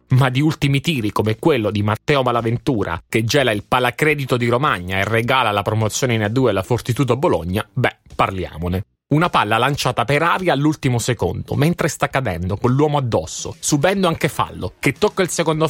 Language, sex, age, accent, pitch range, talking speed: Italian, male, 30-49, native, 110-145 Hz, 180 wpm